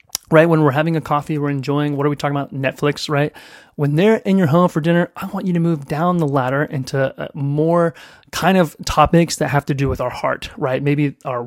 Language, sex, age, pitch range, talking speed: English, male, 30-49, 140-165 Hz, 235 wpm